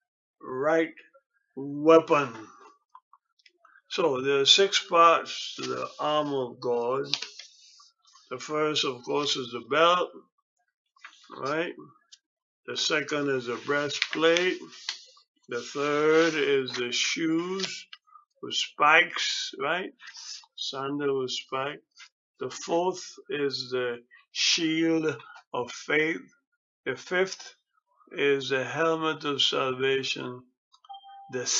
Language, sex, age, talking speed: English, male, 60-79, 95 wpm